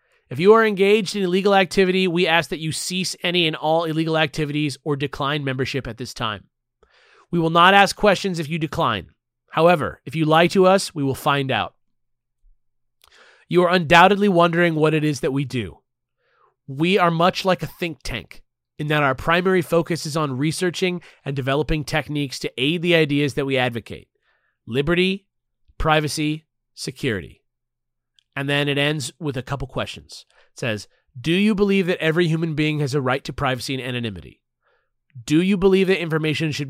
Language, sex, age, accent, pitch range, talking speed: English, male, 30-49, American, 130-175 Hz, 180 wpm